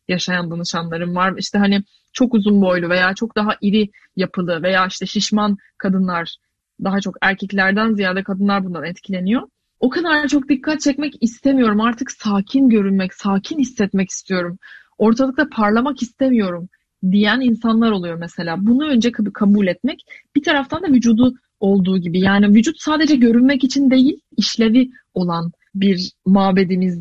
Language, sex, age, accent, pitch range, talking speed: Turkish, female, 30-49, native, 190-250 Hz, 140 wpm